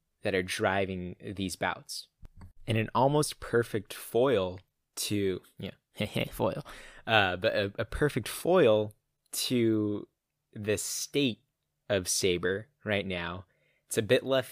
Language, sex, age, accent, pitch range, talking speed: English, male, 20-39, American, 95-115 Hz, 130 wpm